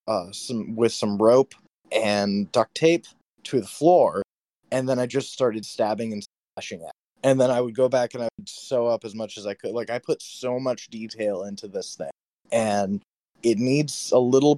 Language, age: English, 20-39